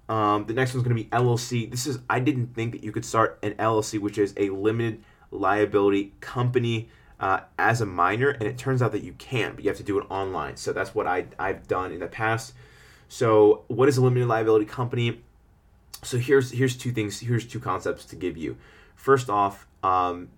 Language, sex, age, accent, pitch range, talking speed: English, male, 30-49, American, 105-125 Hz, 215 wpm